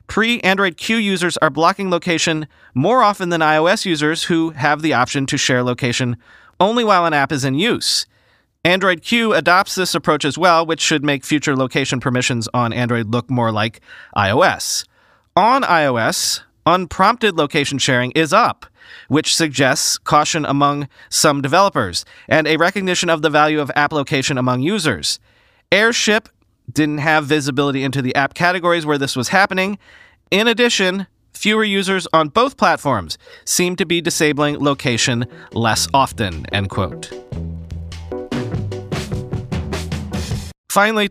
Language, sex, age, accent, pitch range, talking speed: English, male, 30-49, American, 130-180 Hz, 140 wpm